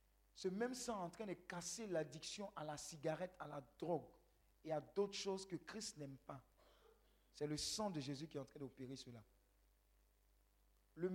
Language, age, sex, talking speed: French, 50-69, male, 190 wpm